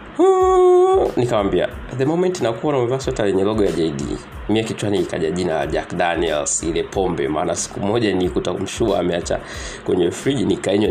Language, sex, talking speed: Swahili, male, 160 wpm